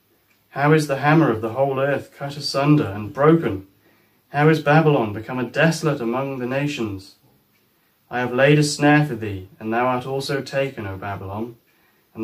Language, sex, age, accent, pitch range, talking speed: English, male, 30-49, British, 110-135 Hz, 175 wpm